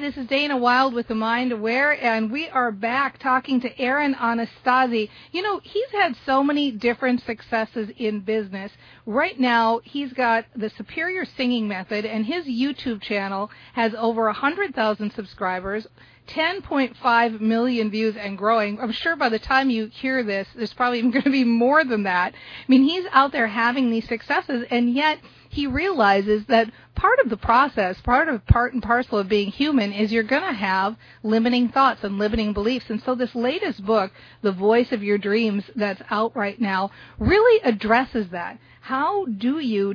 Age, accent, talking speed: 40-59, American, 180 wpm